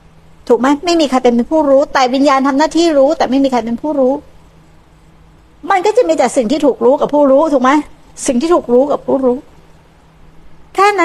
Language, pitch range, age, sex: Thai, 225-280 Hz, 60-79, female